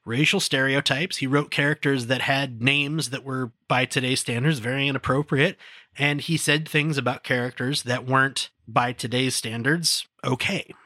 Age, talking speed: 30-49, 150 wpm